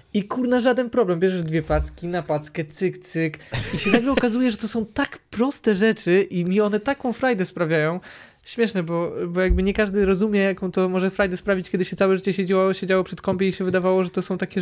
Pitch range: 160-195 Hz